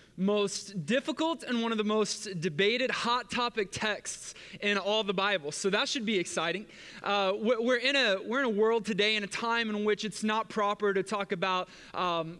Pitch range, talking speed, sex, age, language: 190-245 Hz, 200 wpm, male, 20-39, English